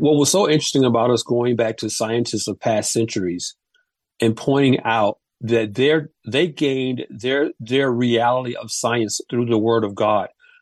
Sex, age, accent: male, 40-59, American